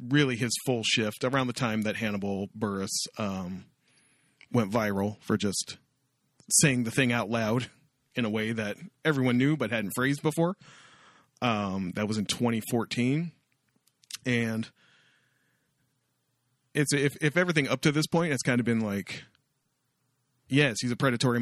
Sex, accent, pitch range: male, American, 110-140 Hz